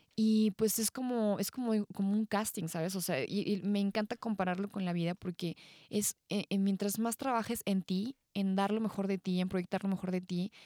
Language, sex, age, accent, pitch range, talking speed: Spanish, female, 20-39, Mexican, 180-215 Hz, 230 wpm